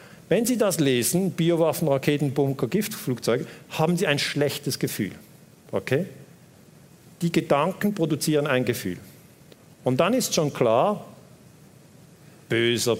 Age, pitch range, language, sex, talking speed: 50-69, 120-160 Hz, German, male, 115 wpm